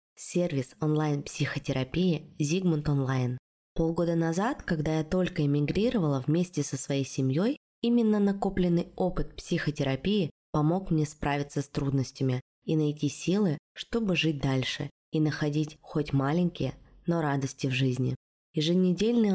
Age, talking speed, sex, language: 20-39, 120 wpm, female, Russian